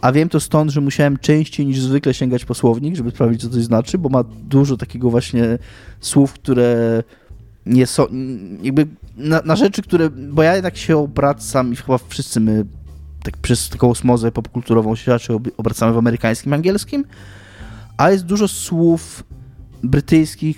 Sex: male